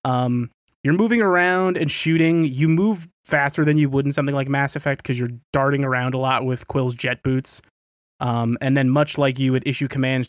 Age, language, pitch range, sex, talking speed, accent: 20-39, English, 120-145 Hz, male, 210 wpm, American